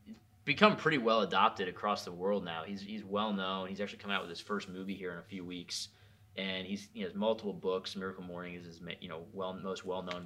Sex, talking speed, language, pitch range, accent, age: male, 235 wpm, English, 95-110 Hz, American, 20-39